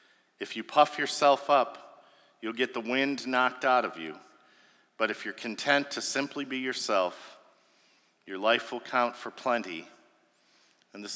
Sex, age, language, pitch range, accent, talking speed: male, 50-69, English, 105-125 Hz, American, 155 wpm